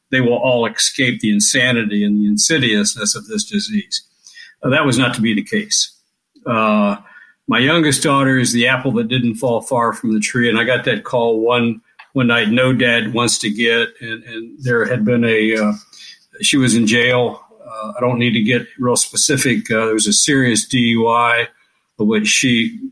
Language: English